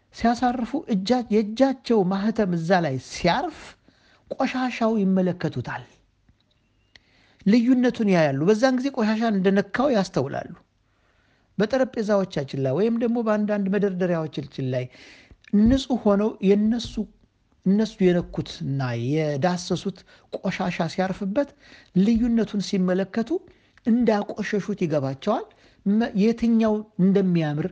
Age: 50-69